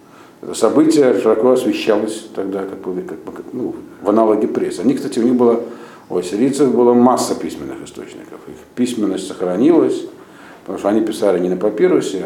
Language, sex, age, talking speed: Russian, male, 50-69, 150 wpm